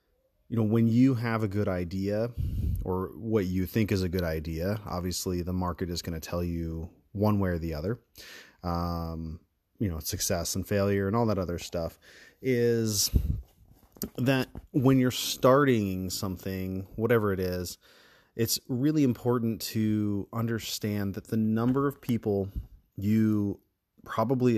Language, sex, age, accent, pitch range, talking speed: English, male, 30-49, American, 90-110 Hz, 150 wpm